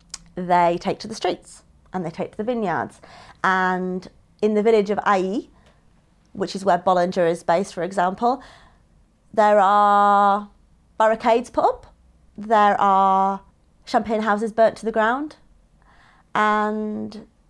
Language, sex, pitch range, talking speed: English, female, 185-215 Hz, 135 wpm